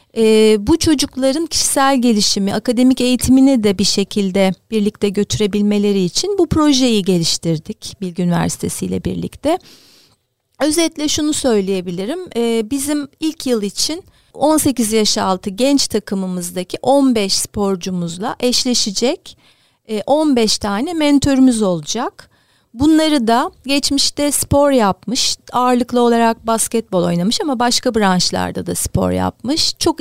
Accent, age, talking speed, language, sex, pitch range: native, 40-59, 115 wpm, Turkish, female, 200-275 Hz